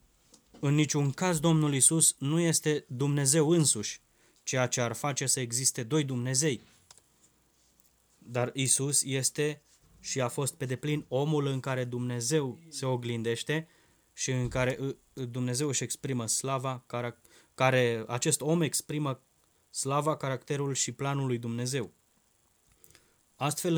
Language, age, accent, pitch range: Romanian, 20-39, native, 120-150 Hz